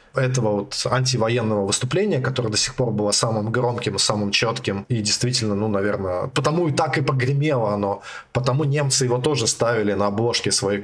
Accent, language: native, Russian